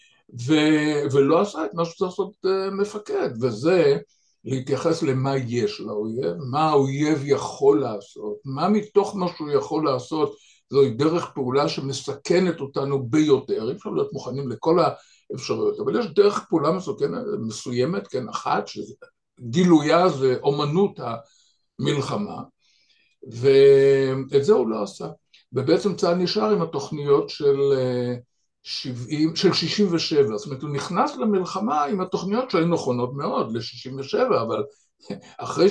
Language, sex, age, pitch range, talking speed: Hebrew, male, 60-79, 135-195 Hz, 130 wpm